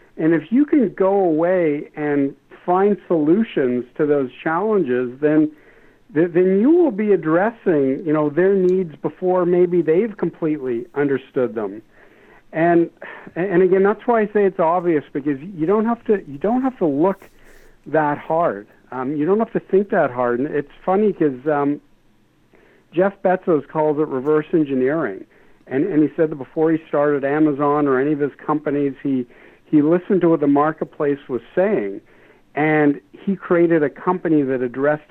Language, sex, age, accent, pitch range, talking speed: English, male, 60-79, American, 140-180 Hz, 165 wpm